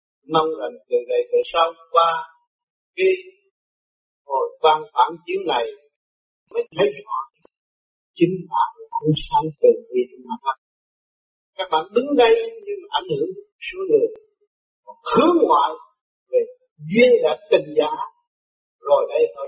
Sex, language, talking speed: male, Vietnamese, 125 wpm